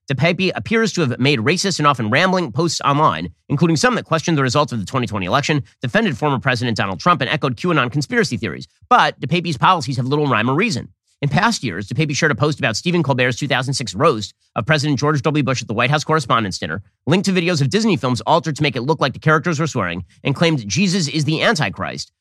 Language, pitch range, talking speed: English, 120-165 Hz, 225 wpm